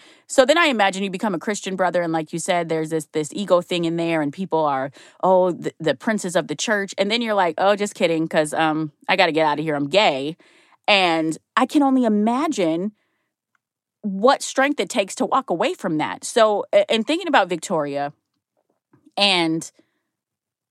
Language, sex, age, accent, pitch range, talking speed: English, female, 20-39, American, 165-225 Hz, 195 wpm